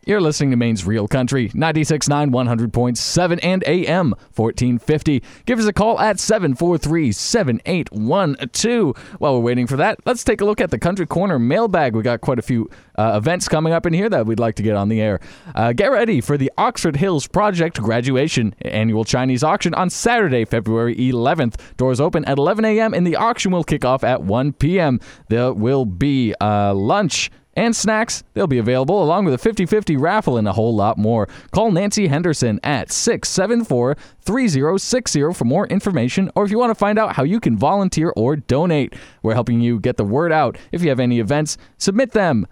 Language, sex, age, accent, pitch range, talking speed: English, male, 20-39, American, 120-180 Hz, 190 wpm